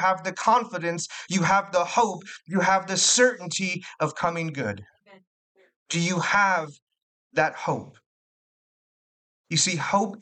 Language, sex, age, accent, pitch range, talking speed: English, male, 30-49, American, 150-190 Hz, 130 wpm